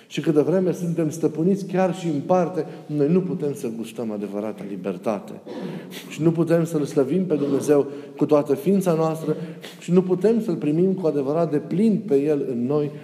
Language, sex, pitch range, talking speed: Romanian, male, 130-165 Hz, 190 wpm